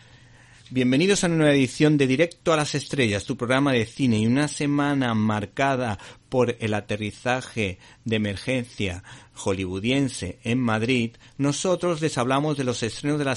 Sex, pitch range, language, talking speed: male, 115-140 Hz, Spanish, 155 wpm